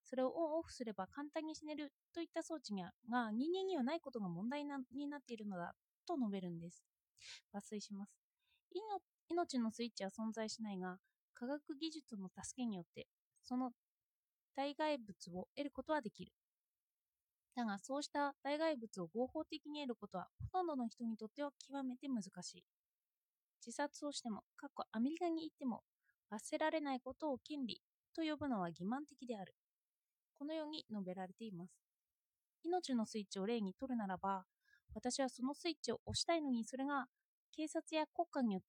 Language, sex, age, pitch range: Japanese, female, 20-39, 210-305 Hz